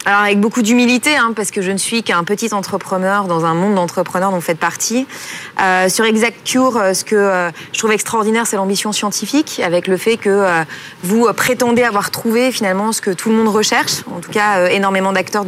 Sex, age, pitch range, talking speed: female, 20-39, 190-235 Hz, 215 wpm